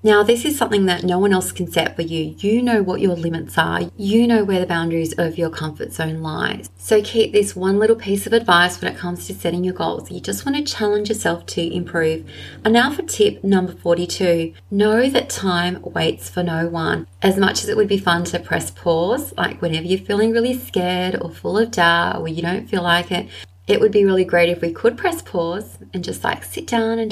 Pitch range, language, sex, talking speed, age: 175-225 Hz, English, female, 235 wpm, 20-39